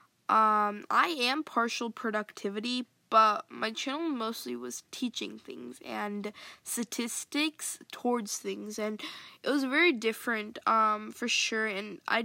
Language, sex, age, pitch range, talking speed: English, female, 10-29, 210-250 Hz, 125 wpm